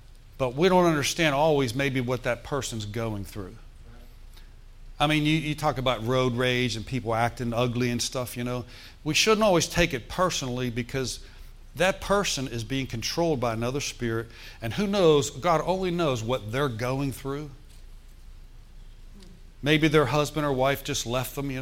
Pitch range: 115-150 Hz